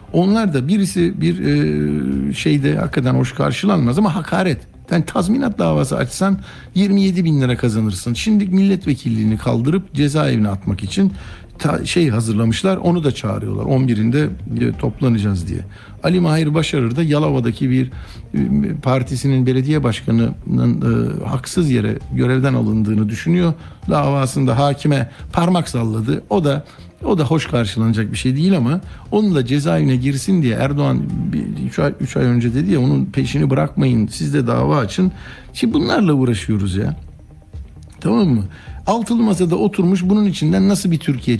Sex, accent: male, native